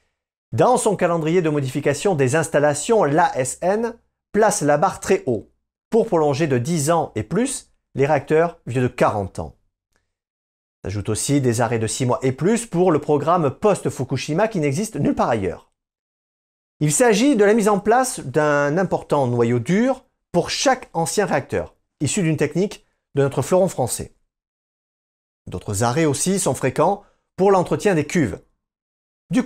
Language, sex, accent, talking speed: French, male, French, 155 wpm